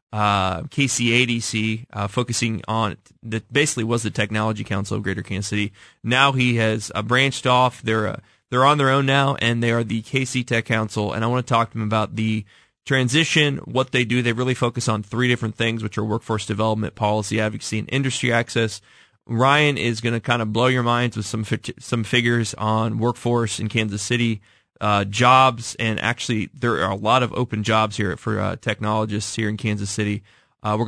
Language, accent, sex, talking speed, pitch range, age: English, American, male, 200 wpm, 110-120 Hz, 20-39